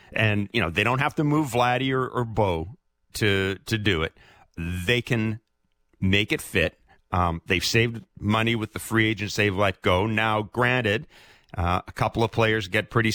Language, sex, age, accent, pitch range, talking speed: English, male, 40-59, American, 95-115 Hz, 185 wpm